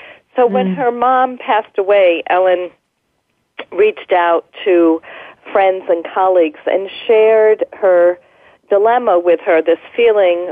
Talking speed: 120 wpm